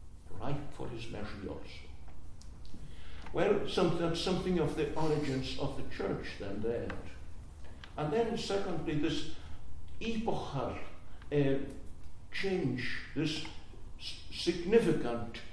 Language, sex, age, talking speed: English, male, 60-79, 95 wpm